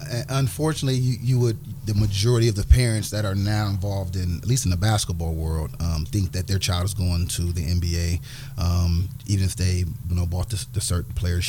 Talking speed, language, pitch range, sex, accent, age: 210 wpm, English, 90-110 Hz, male, American, 30-49